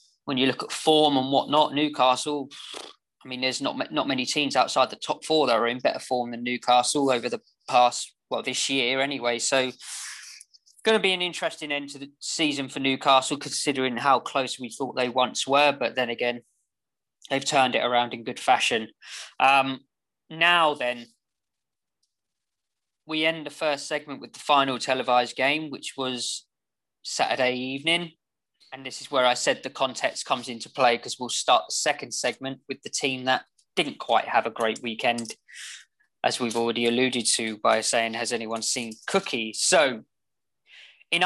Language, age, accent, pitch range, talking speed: English, 20-39, British, 125-155 Hz, 175 wpm